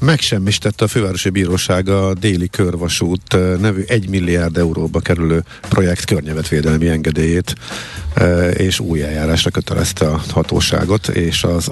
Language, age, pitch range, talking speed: Hungarian, 50-69, 85-105 Hz, 120 wpm